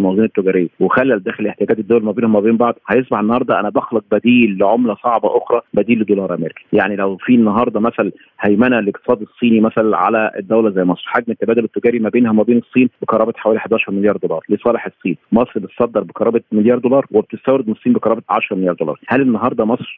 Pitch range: 105-125 Hz